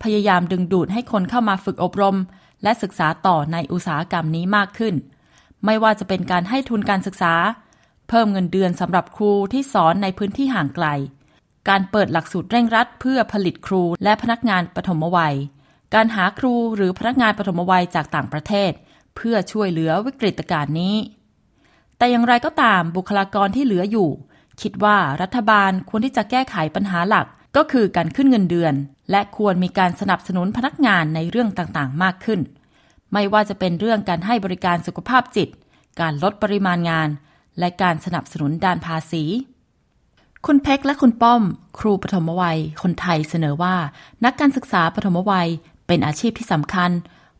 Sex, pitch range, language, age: female, 170-220 Hz, Thai, 20-39